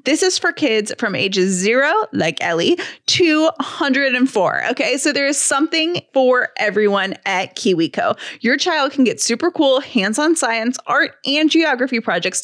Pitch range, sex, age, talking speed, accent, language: 210-285 Hz, female, 20-39, 155 wpm, American, English